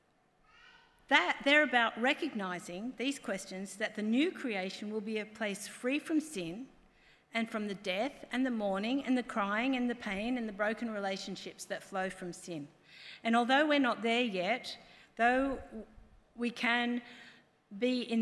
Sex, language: female, English